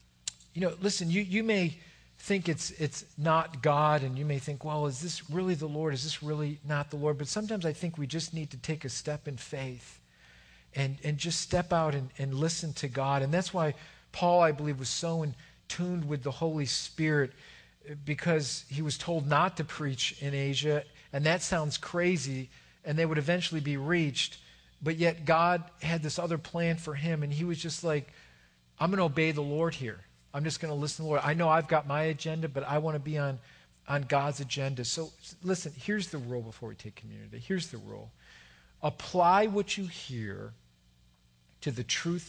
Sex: male